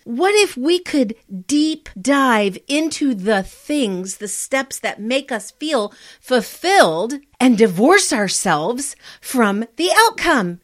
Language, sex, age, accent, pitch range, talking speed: English, female, 40-59, American, 180-245 Hz, 125 wpm